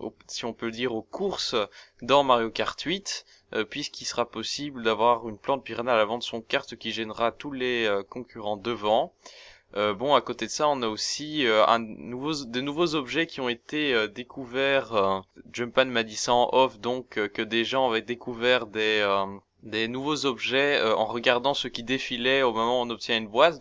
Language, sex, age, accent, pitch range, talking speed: French, male, 20-39, French, 110-135 Hz, 210 wpm